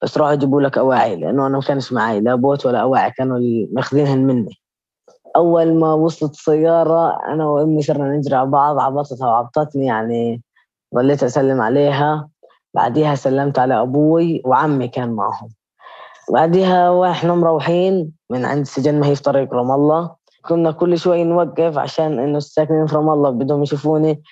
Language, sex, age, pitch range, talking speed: Arabic, female, 20-39, 130-155 Hz, 160 wpm